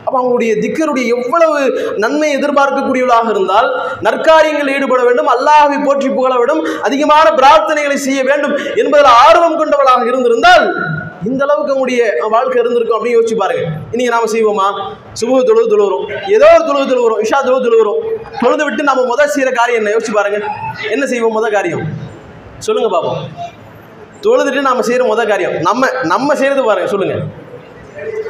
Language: English